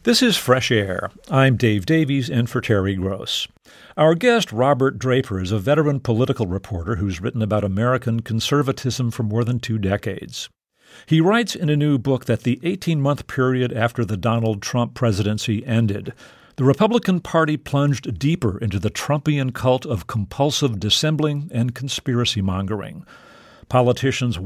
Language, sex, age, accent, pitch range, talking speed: English, male, 50-69, American, 110-140 Hz, 150 wpm